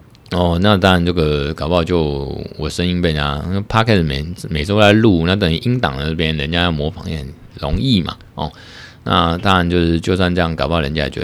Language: Chinese